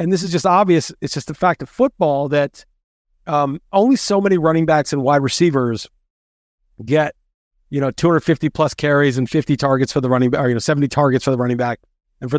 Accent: American